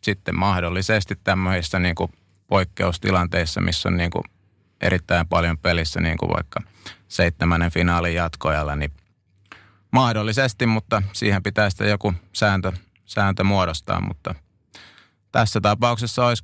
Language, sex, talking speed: Finnish, male, 105 wpm